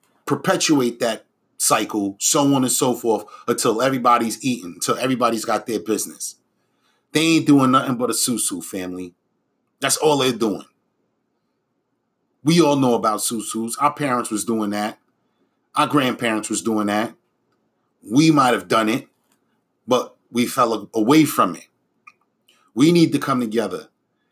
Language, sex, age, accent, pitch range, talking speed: English, male, 30-49, American, 115-150 Hz, 145 wpm